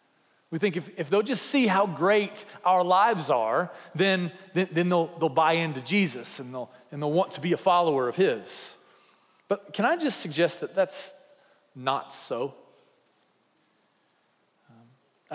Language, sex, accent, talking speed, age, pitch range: English, male, American, 160 wpm, 40-59, 150-195 Hz